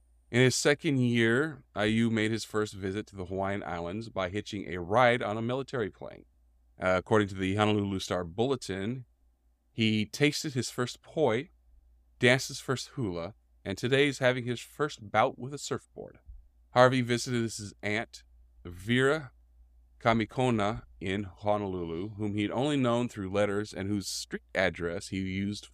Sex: male